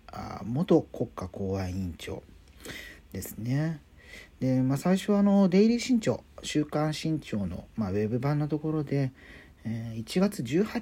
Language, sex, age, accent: Japanese, male, 40-59, native